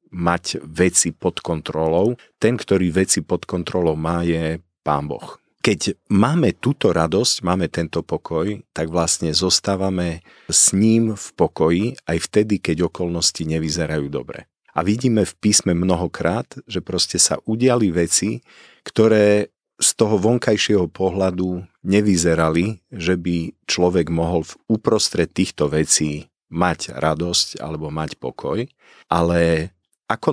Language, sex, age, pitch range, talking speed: Slovak, male, 40-59, 80-95 Hz, 125 wpm